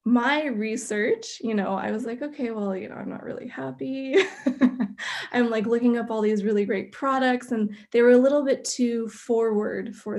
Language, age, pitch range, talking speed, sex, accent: English, 20-39, 215-245 Hz, 195 wpm, female, American